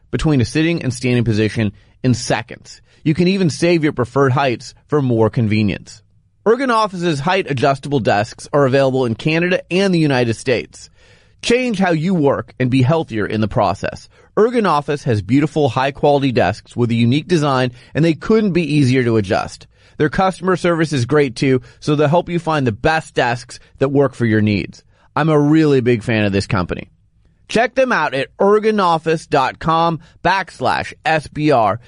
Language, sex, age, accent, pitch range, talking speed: English, male, 30-49, American, 120-170 Hz, 170 wpm